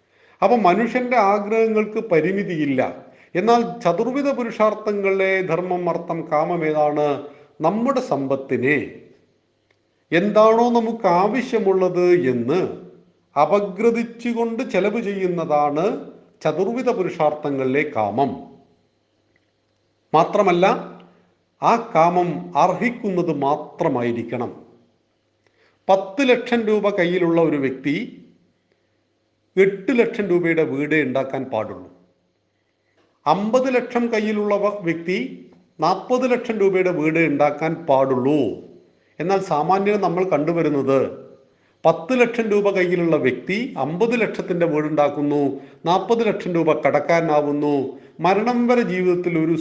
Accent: native